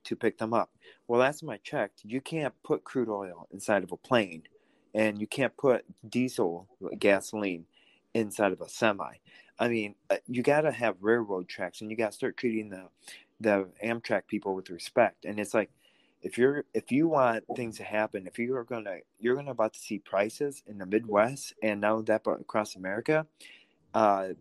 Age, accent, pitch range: 30-49, American, 100-115 Hz